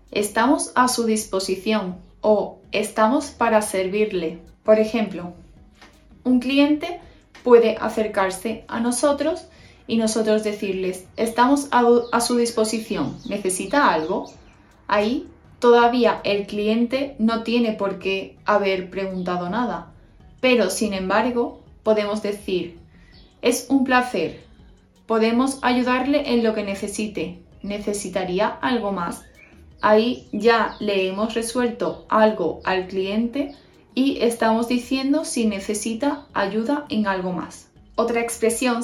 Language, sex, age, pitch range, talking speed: Spanish, female, 20-39, 200-245 Hz, 115 wpm